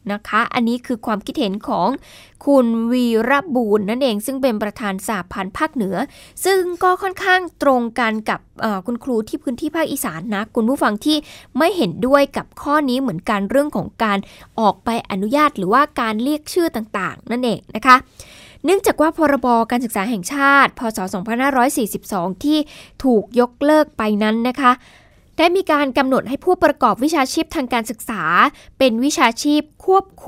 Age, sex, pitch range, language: 10-29, female, 225-290 Hz, Thai